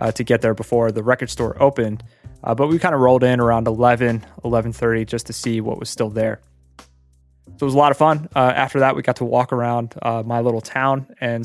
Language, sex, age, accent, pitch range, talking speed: English, male, 20-39, American, 115-135 Hz, 240 wpm